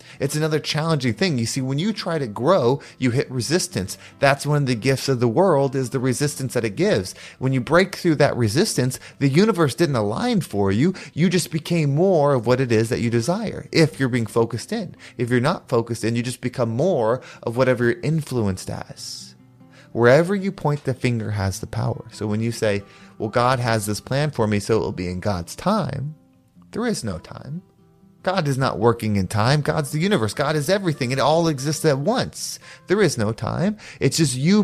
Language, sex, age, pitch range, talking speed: English, male, 30-49, 120-160 Hz, 215 wpm